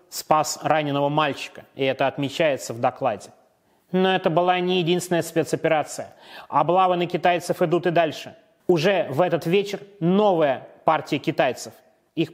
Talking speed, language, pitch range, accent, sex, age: 135 wpm, Russian, 155-185 Hz, native, male, 30-49